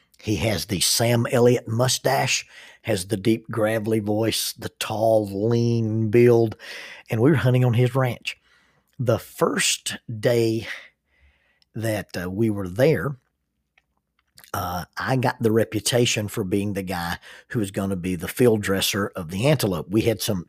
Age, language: 50-69, English